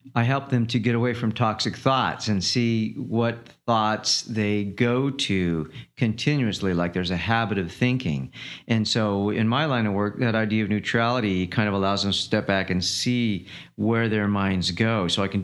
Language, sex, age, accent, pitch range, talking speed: English, male, 50-69, American, 100-120 Hz, 195 wpm